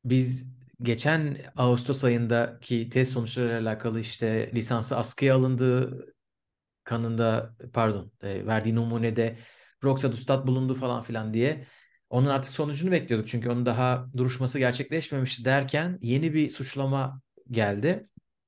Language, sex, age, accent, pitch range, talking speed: Turkish, male, 40-59, native, 115-140 Hz, 115 wpm